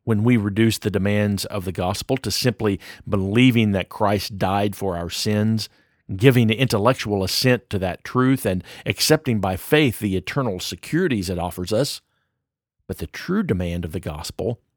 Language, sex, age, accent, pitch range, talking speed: English, male, 50-69, American, 95-130 Hz, 165 wpm